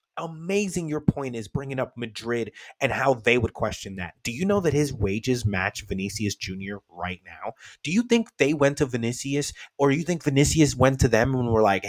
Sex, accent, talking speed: male, American, 205 wpm